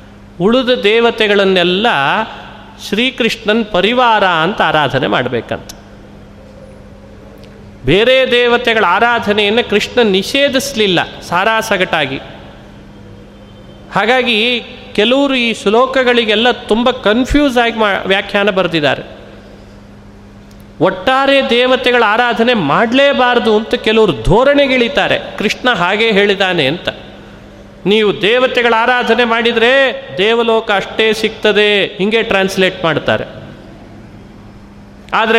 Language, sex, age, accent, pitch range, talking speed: Kannada, male, 30-49, native, 170-235 Hz, 80 wpm